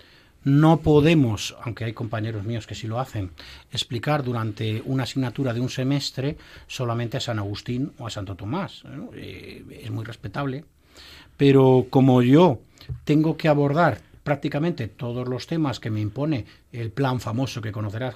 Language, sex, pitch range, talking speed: Spanish, male, 115-150 Hz, 155 wpm